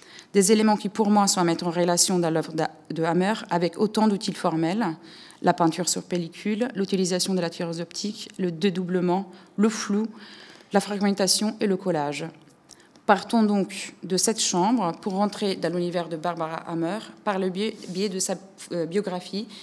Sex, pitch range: female, 165-195 Hz